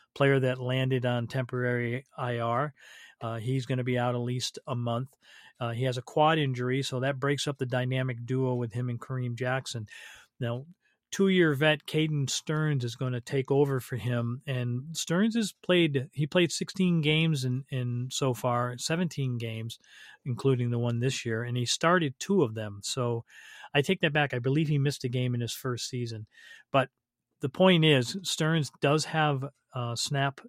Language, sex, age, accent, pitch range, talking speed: English, male, 40-59, American, 125-145 Hz, 185 wpm